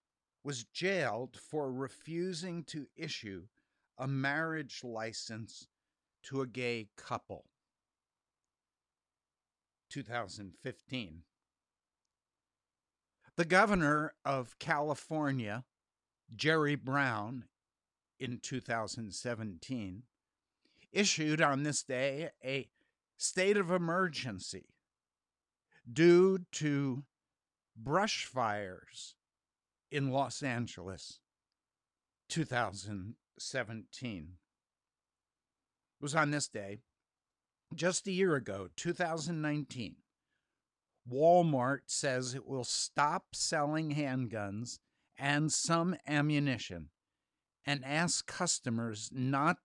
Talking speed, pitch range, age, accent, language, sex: 75 wpm, 115-150 Hz, 60-79, American, English, male